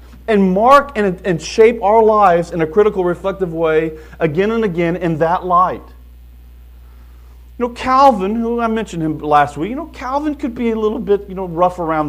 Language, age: English, 40-59